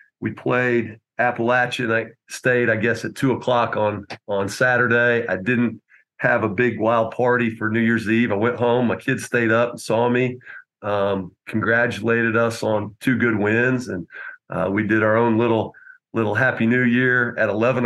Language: English